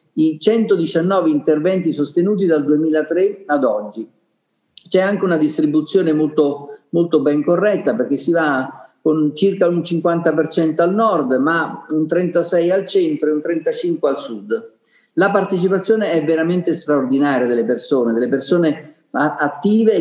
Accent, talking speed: native, 135 wpm